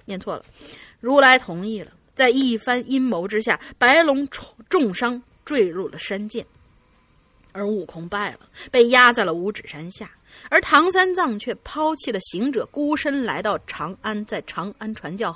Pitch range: 185-255 Hz